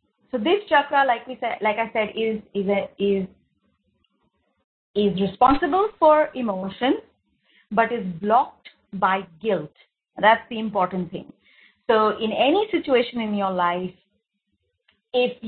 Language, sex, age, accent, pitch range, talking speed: English, female, 30-49, Indian, 195-260 Hz, 130 wpm